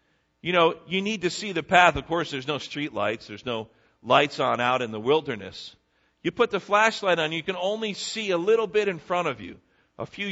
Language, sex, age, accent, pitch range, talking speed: English, male, 50-69, American, 110-165 Hz, 235 wpm